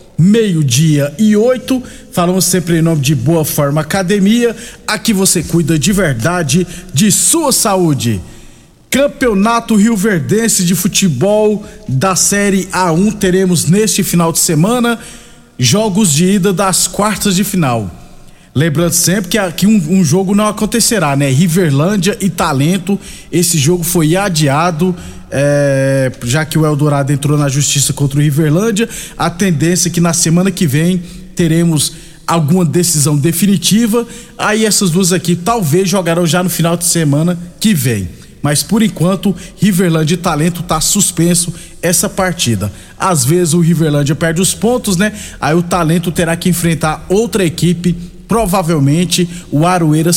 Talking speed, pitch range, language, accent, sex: 145 wpm, 160-195 Hz, Portuguese, Brazilian, male